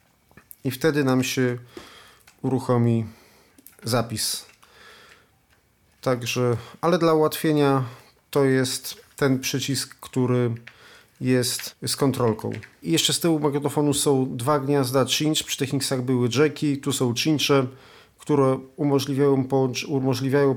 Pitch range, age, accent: 120-140 Hz, 40-59, native